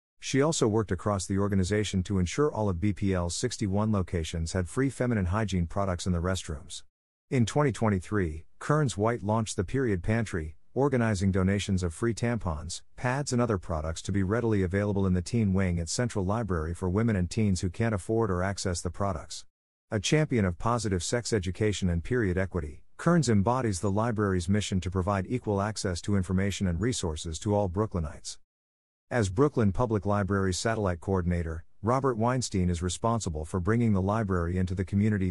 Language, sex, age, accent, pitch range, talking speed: English, male, 50-69, American, 90-115 Hz, 175 wpm